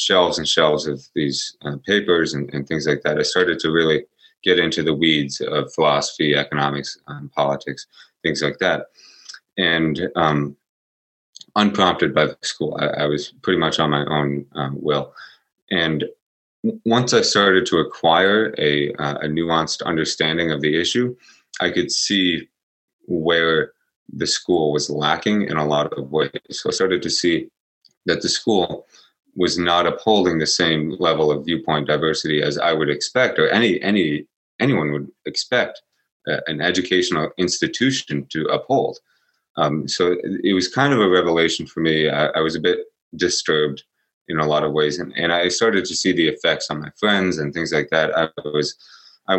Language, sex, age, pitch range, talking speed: English, male, 30-49, 75-90 Hz, 175 wpm